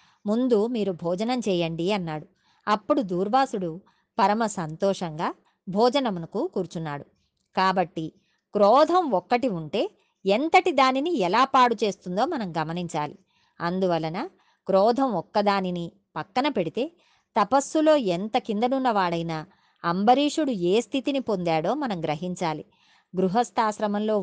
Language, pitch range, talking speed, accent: Telugu, 175-245 Hz, 90 wpm, native